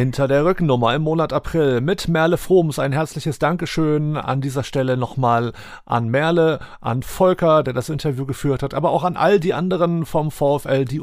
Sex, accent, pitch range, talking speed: male, German, 135-170 Hz, 185 wpm